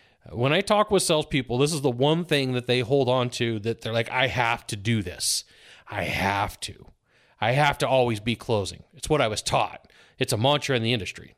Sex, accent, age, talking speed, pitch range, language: male, American, 30-49, 225 wpm, 120-160 Hz, English